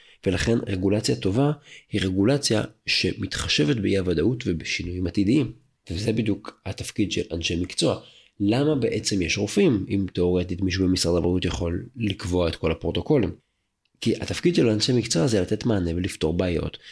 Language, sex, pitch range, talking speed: Hebrew, male, 90-120 Hz, 140 wpm